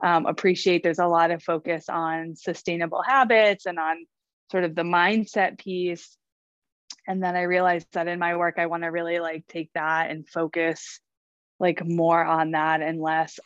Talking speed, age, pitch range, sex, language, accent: 180 wpm, 20-39, 160-180 Hz, female, English, American